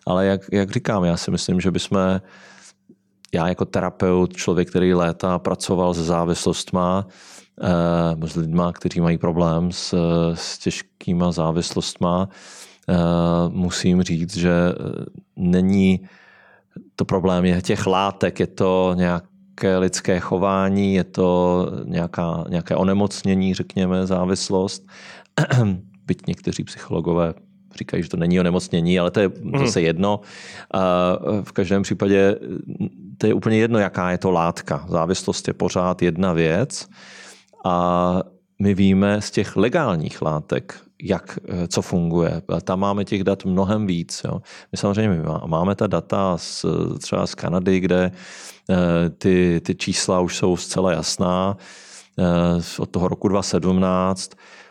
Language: Czech